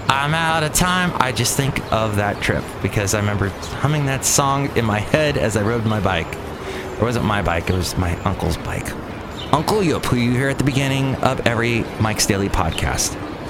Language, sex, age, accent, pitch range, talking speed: English, male, 30-49, American, 105-135 Hz, 205 wpm